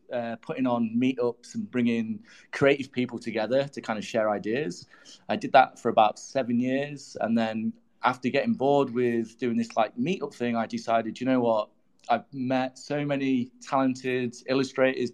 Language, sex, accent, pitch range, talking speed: English, male, British, 120-140 Hz, 170 wpm